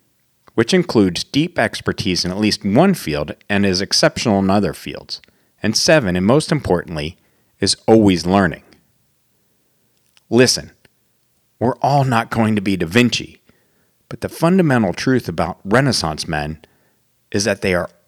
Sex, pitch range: male, 90-120 Hz